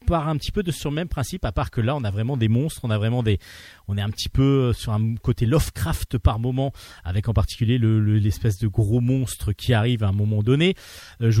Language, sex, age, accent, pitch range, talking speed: French, male, 40-59, French, 110-145 Hz, 265 wpm